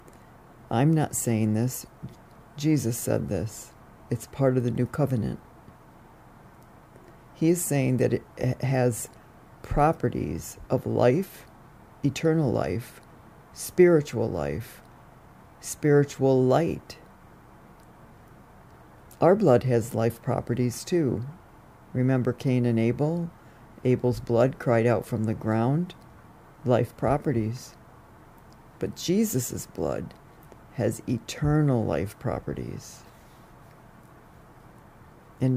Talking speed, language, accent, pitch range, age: 95 wpm, English, American, 115-135 Hz, 50-69